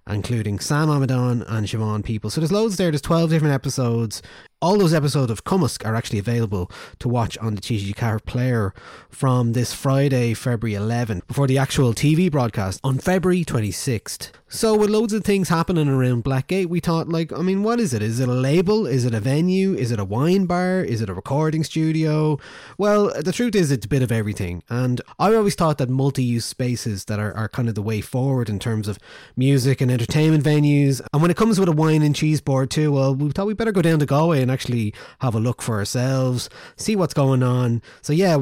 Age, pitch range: 20-39, 115-155 Hz